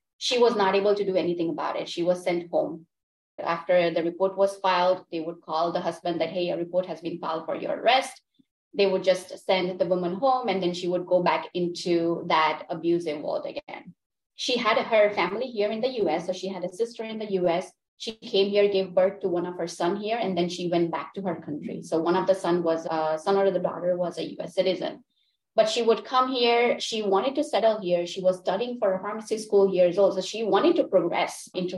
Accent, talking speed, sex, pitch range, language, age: Indian, 235 wpm, female, 170-205 Hz, English, 20-39